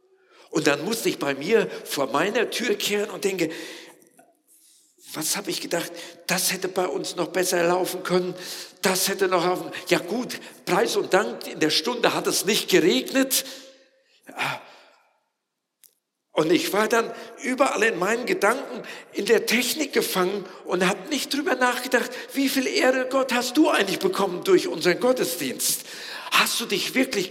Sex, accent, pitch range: male, German, 180-270 Hz